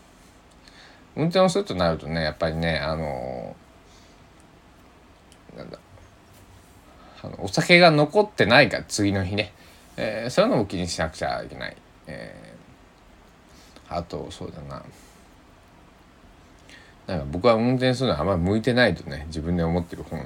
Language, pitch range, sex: Japanese, 85-125 Hz, male